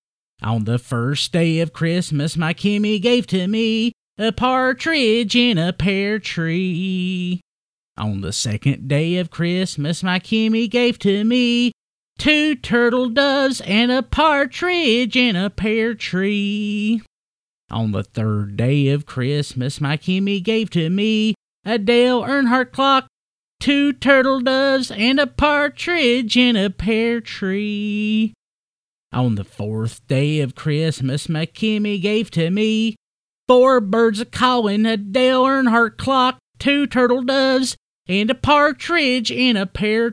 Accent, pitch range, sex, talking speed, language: American, 165-255 Hz, male, 135 wpm, English